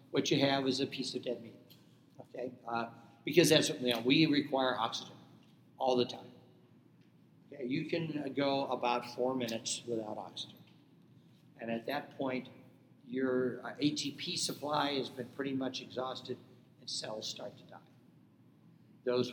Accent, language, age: American, English, 60-79